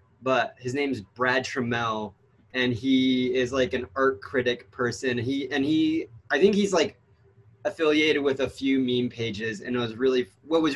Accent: American